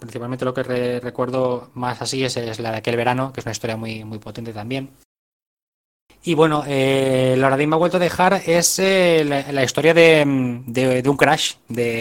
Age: 20-39